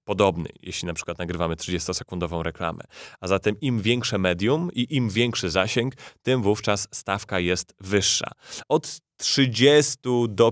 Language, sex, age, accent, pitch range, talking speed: Polish, male, 30-49, native, 90-110 Hz, 135 wpm